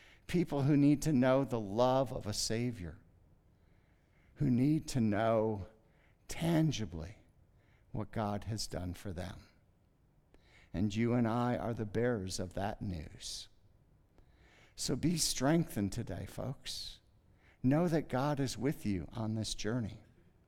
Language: English